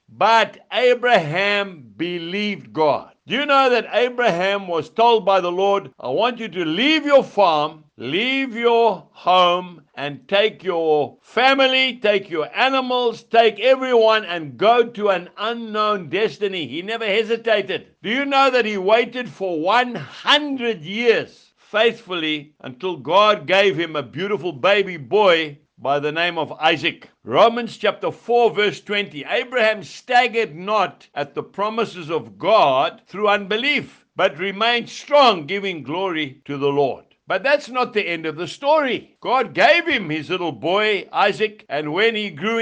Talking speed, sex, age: 150 wpm, male, 60-79